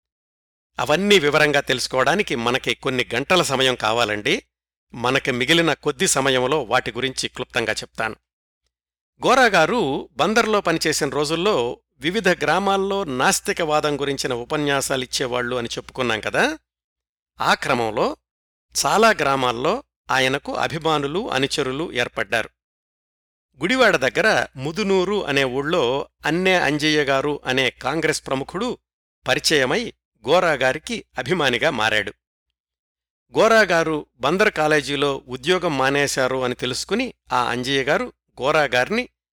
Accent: native